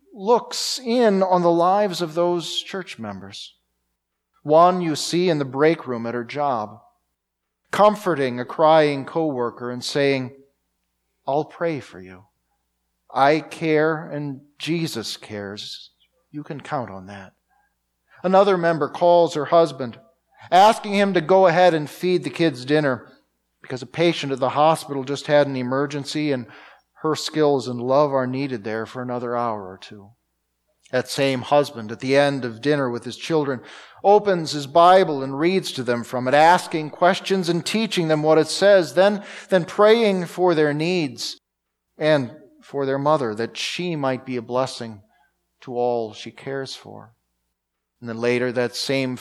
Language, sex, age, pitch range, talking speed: English, male, 40-59, 120-170 Hz, 160 wpm